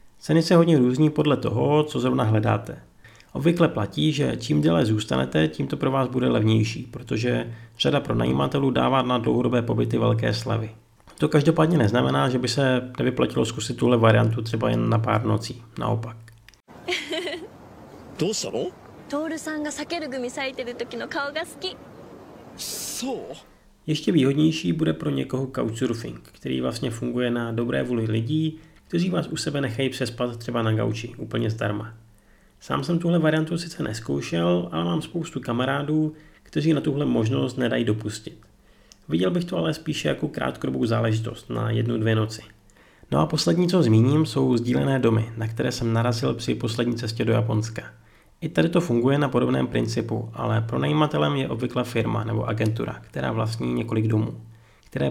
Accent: native